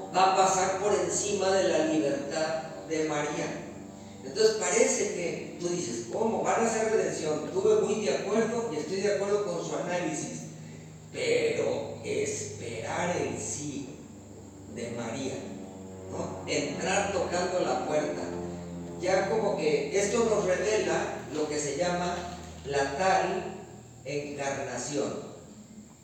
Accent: Mexican